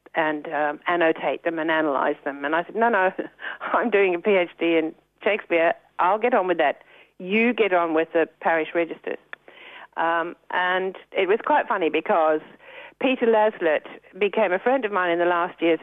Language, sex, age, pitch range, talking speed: English, female, 60-79, 175-265 Hz, 180 wpm